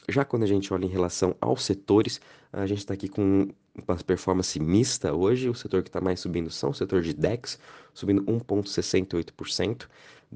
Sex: male